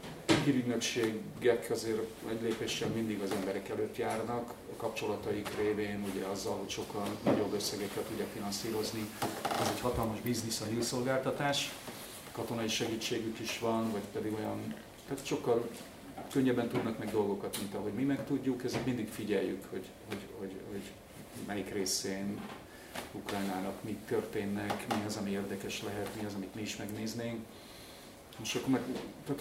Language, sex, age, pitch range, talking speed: Hungarian, male, 40-59, 110-125 Hz, 145 wpm